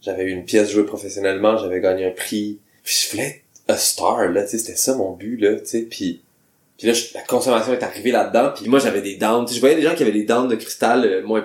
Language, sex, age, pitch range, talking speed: French, male, 20-39, 100-130 Hz, 260 wpm